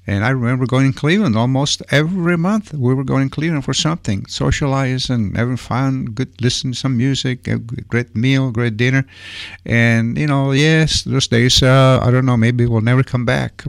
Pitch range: 95-125 Hz